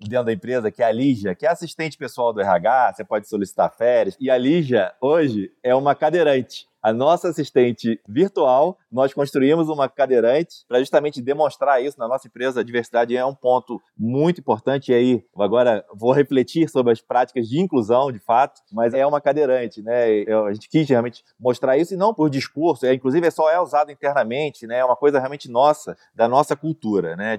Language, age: Portuguese, 20-39